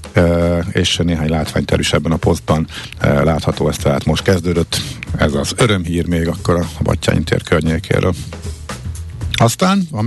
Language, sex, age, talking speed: Hungarian, male, 50-69, 145 wpm